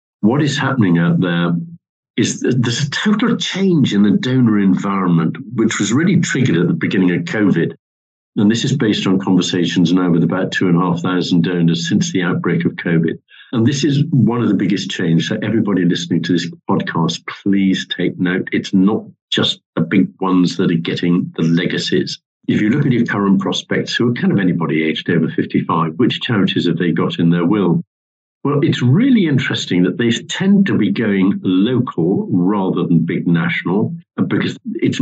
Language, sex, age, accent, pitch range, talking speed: English, male, 50-69, British, 85-110 Hz, 185 wpm